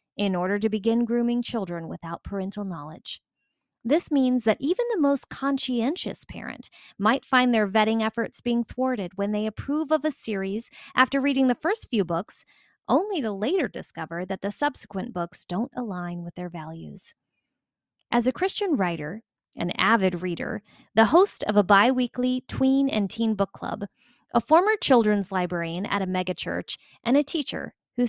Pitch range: 195-265 Hz